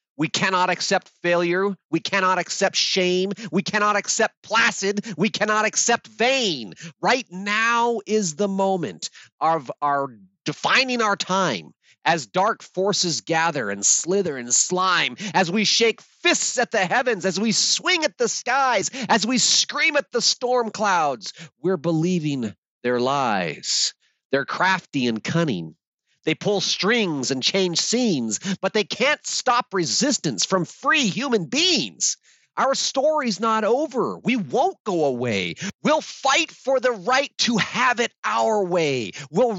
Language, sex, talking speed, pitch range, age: English, male, 145 wpm, 180-245 Hz, 40-59